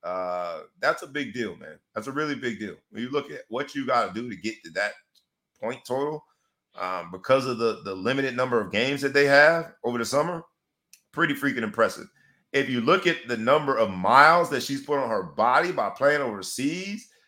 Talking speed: 210 wpm